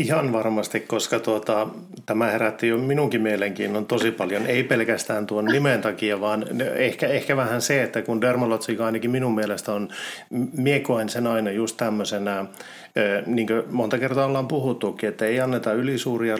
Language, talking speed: Finnish, 155 wpm